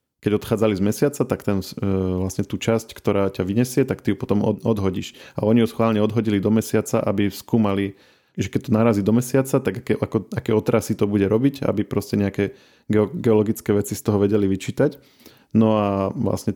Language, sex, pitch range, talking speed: Slovak, male, 100-115 Hz, 190 wpm